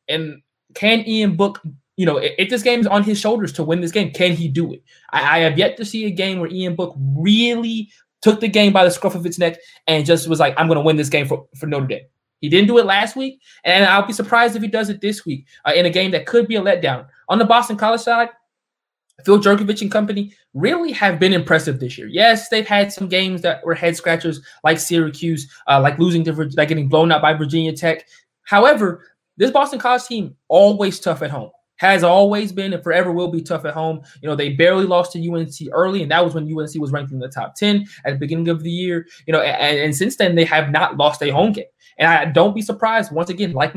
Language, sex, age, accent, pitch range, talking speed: English, male, 20-39, American, 160-210 Hz, 250 wpm